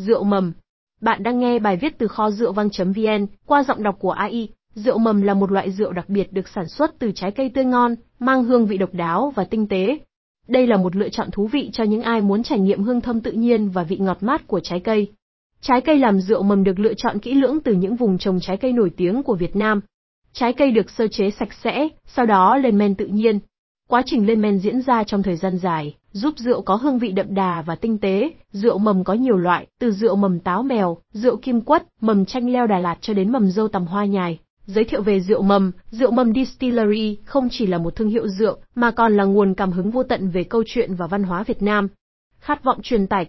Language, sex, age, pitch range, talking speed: Vietnamese, female, 20-39, 195-245 Hz, 245 wpm